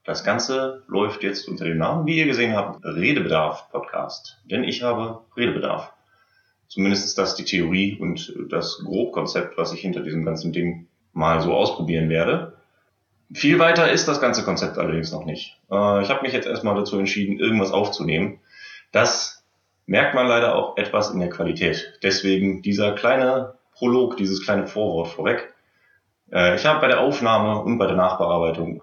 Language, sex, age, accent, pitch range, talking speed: German, male, 30-49, German, 90-115 Hz, 160 wpm